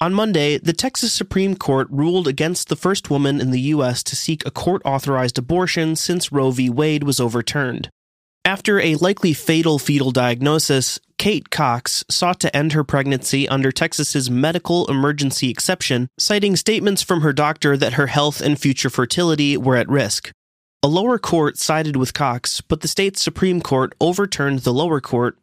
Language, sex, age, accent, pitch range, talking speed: English, male, 30-49, American, 125-165 Hz, 170 wpm